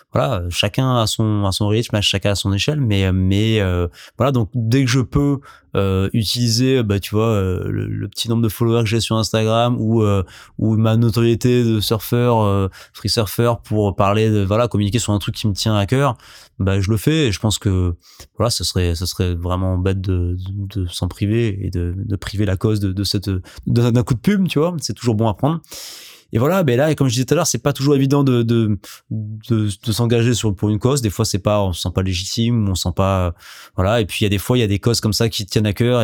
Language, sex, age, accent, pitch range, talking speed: French, male, 20-39, French, 95-115 Hz, 260 wpm